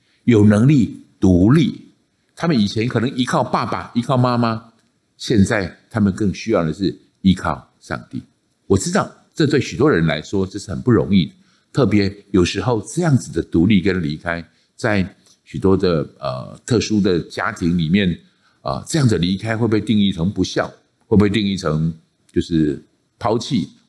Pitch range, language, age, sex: 95-130 Hz, Chinese, 50-69, male